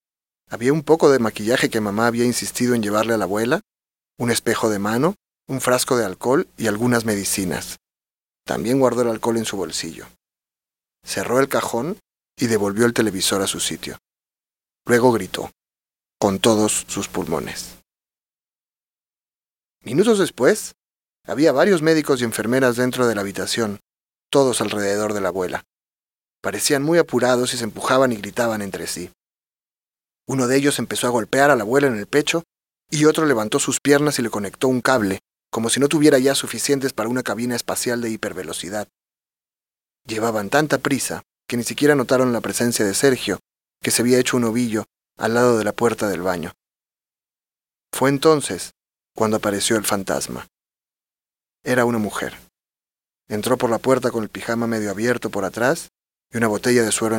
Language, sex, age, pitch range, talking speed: Spanish, male, 40-59, 105-130 Hz, 165 wpm